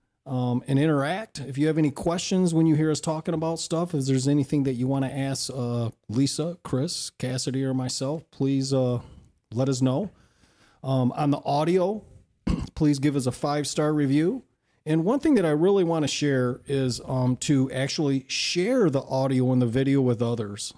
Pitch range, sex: 130-165 Hz, male